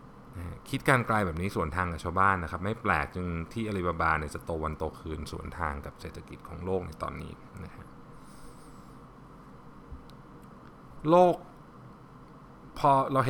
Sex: male